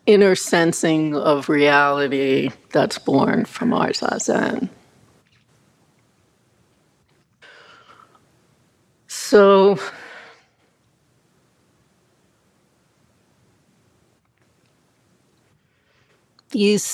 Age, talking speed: 60-79, 40 wpm